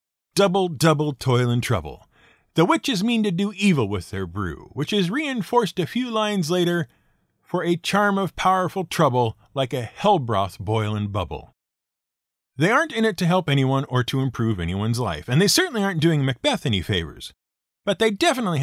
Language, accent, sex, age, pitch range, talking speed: English, American, male, 50-69, 120-195 Hz, 180 wpm